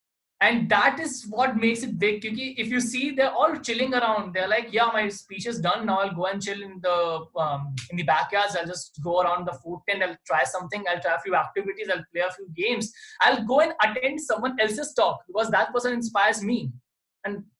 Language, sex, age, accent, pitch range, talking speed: English, male, 20-39, Indian, 175-230 Hz, 225 wpm